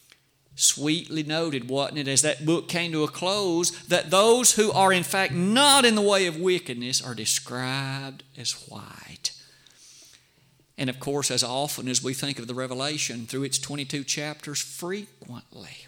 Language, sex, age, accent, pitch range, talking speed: English, male, 50-69, American, 130-170 Hz, 165 wpm